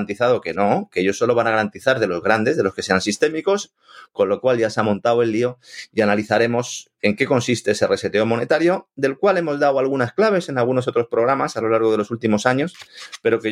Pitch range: 100-125 Hz